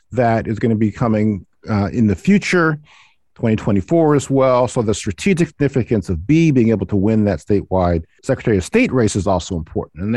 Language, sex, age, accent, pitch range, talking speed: English, male, 50-69, American, 100-135 Hz, 195 wpm